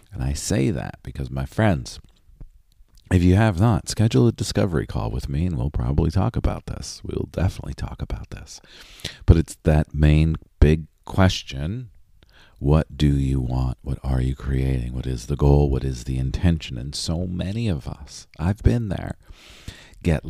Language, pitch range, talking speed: English, 70-95 Hz, 175 wpm